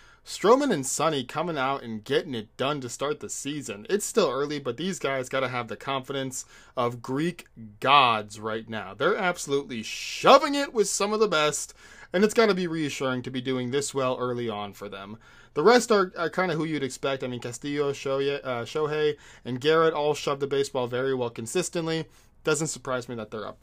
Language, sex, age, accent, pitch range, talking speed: English, male, 20-39, American, 135-170 Hz, 210 wpm